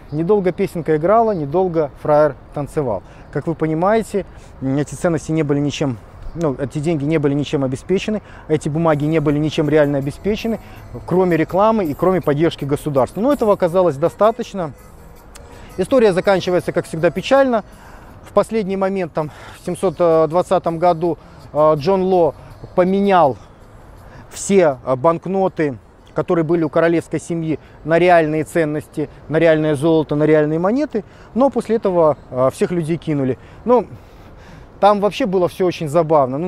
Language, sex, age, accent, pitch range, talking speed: Russian, male, 30-49, native, 145-185 Hz, 135 wpm